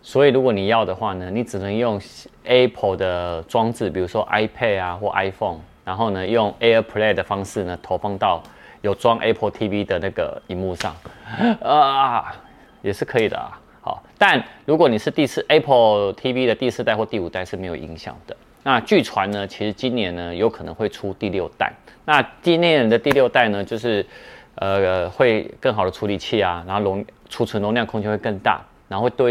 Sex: male